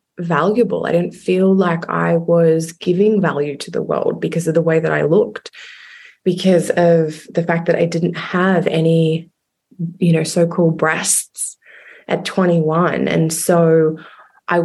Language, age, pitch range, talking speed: English, 20-39, 160-180 Hz, 150 wpm